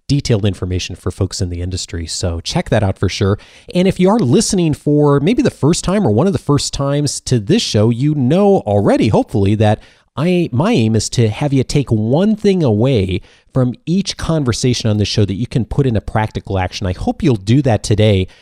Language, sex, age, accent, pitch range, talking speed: English, male, 40-59, American, 100-135 Hz, 220 wpm